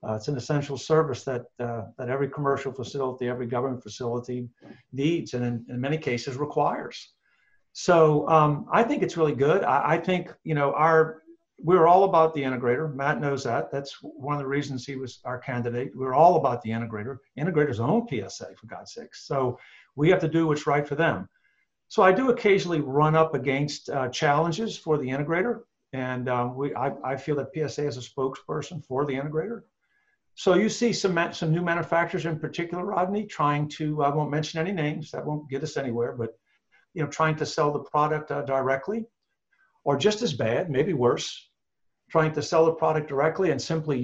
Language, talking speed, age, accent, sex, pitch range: English, 195 wpm, 50-69, American, male, 130-160 Hz